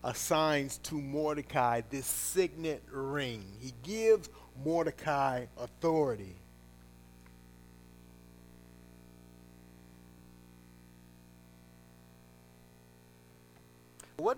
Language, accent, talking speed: English, American, 45 wpm